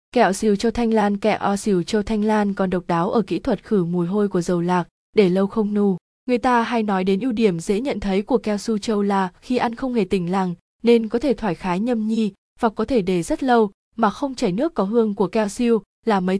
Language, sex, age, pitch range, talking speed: Vietnamese, female, 20-39, 190-230 Hz, 265 wpm